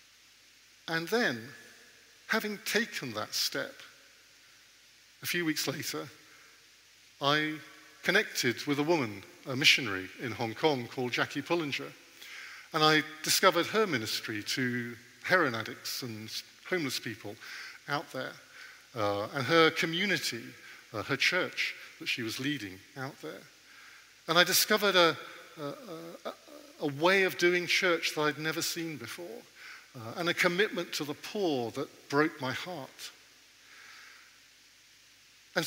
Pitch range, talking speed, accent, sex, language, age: 130-180 Hz, 130 wpm, British, male, English, 50-69